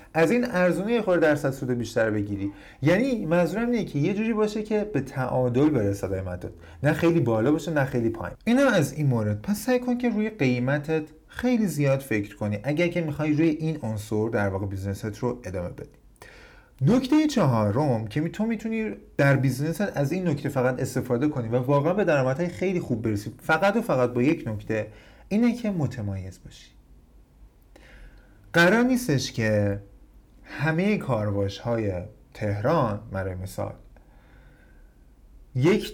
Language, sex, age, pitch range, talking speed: Persian, male, 30-49, 110-170 Hz, 160 wpm